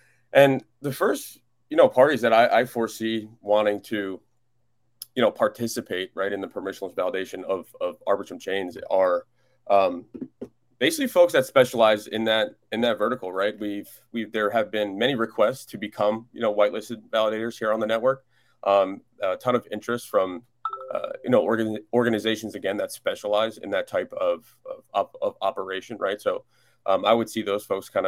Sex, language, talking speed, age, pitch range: male, English, 175 wpm, 30-49, 105-125 Hz